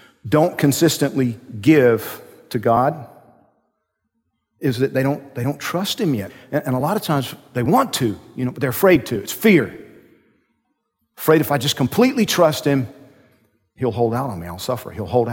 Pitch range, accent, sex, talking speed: 120-160 Hz, American, male, 185 wpm